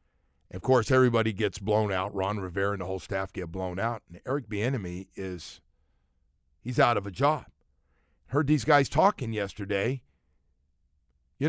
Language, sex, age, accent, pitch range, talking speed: English, male, 50-69, American, 95-155 Hz, 150 wpm